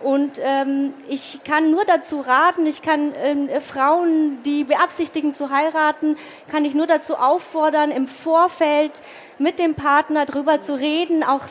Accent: German